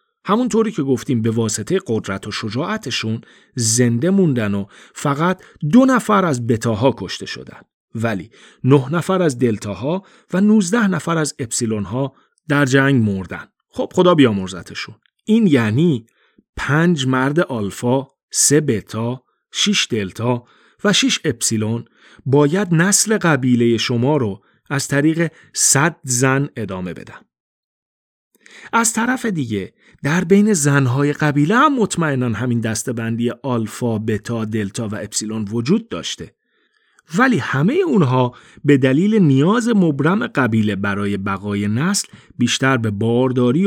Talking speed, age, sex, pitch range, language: 125 wpm, 40-59, male, 115-175 Hz, Persian